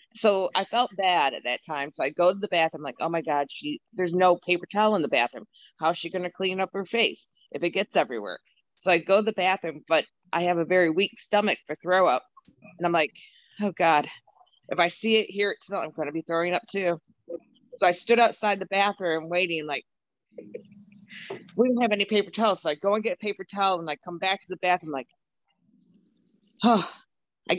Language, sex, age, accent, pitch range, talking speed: English, female, 40-59, American, 175-240 Hz, 225 wpm